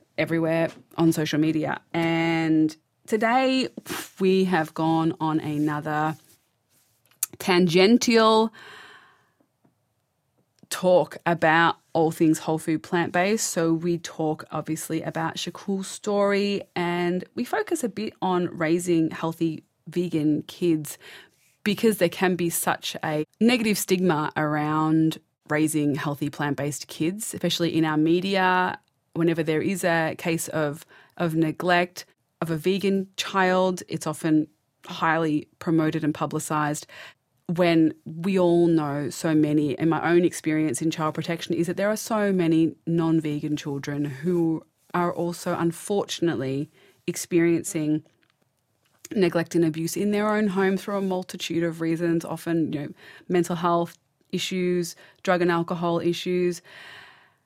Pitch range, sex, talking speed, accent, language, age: 155-180 Hz, female, 125 wpm, Australian, English, 20-39